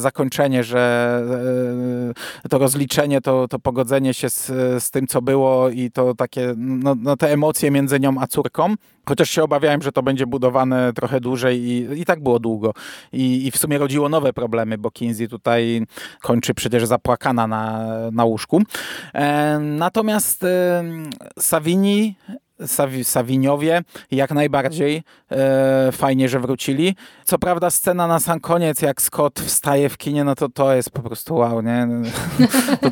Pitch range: 120-155 Hz